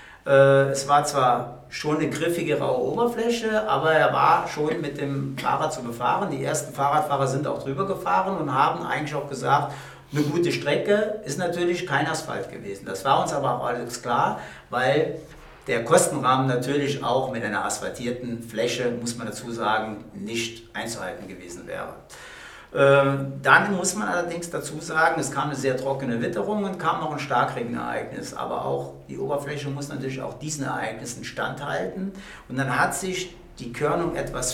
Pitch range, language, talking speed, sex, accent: 125-170 Hz, German, 165 wpm, male, German